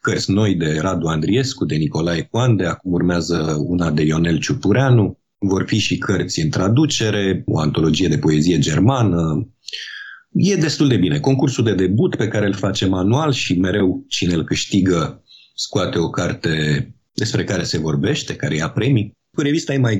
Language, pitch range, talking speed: Romanian, 90-125 Hz, 170 wpm